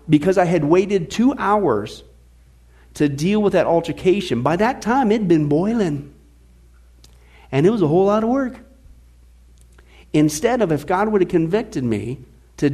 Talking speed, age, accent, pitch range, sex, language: 165 wpm, 50-69, American, 145-230 Hz, male, English